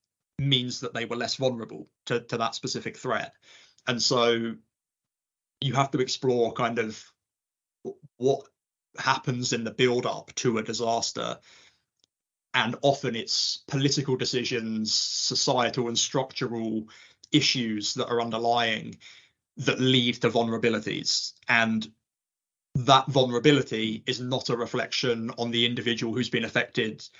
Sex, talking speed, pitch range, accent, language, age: male, 125 wpm, 110-130 Hz, British, English, 20-39